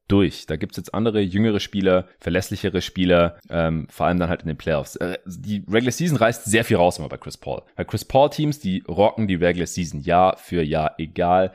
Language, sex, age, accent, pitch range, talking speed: German, male, 30-49, German, 90-115 Hz, 225 wpm